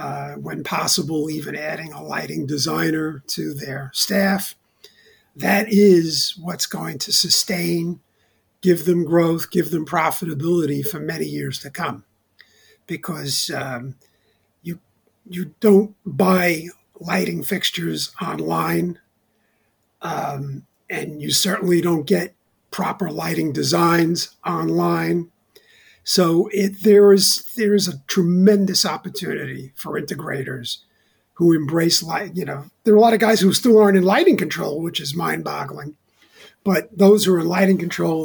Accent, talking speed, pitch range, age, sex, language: American, 135 wpm, 155-195 Hz, 50-69, male, English